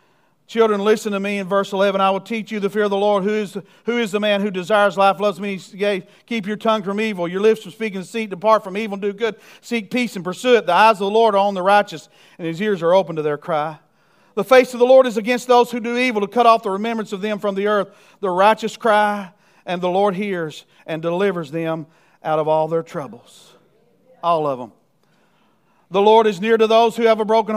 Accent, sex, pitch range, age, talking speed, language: American, male, 175-220 Hz, 50-69, 250 wpm, English